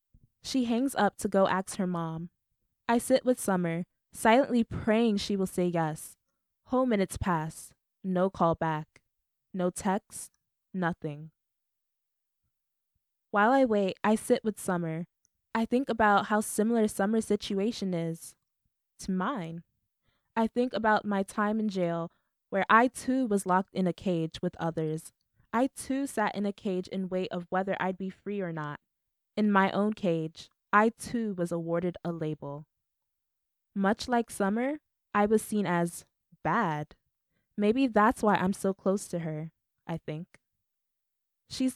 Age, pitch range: 20-39, 170-215 Hz